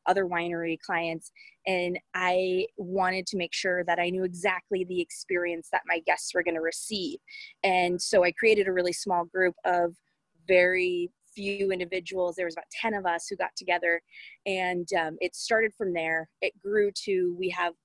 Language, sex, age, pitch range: English, female, 20-39, 170-195 Hz